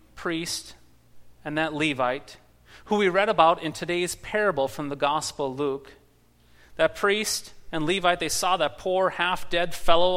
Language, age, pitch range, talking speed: English, 40-59, 140-180 Hz, 155 wpm